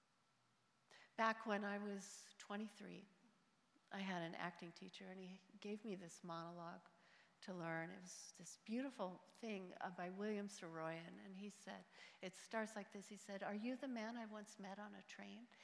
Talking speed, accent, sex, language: 175 wpm, American, female, English